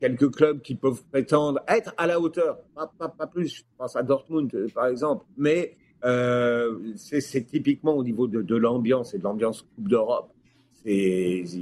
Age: 50-69